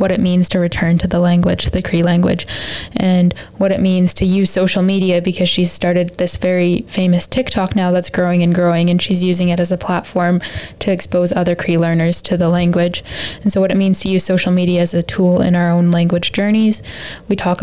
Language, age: English, 10-29